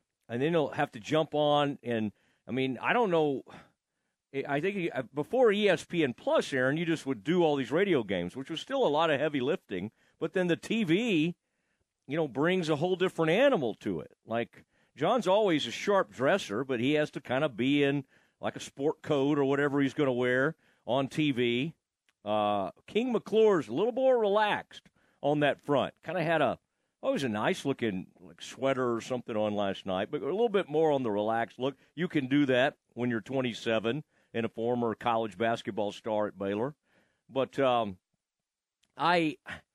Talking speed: 190 wpm